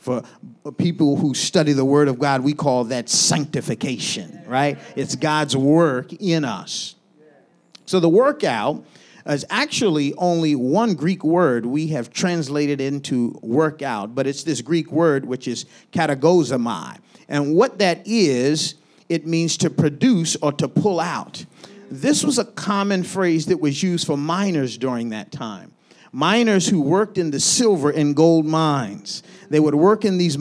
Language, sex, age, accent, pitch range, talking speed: English, male, 40-59, American, 140-180 Hz, 155 wpm